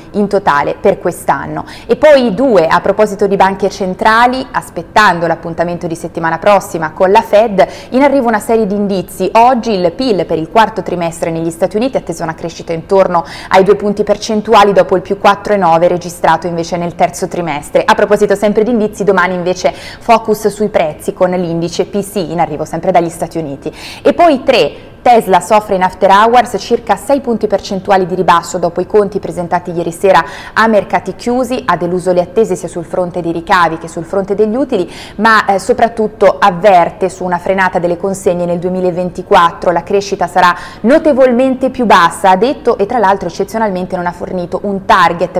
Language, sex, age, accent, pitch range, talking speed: Italian, female, 20-39, native, 175-215 Hz, 180 wpm